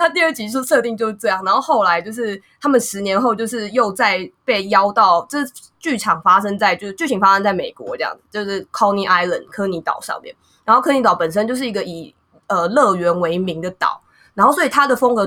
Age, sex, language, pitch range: 20-39, female, Chinese, 190-255 Hz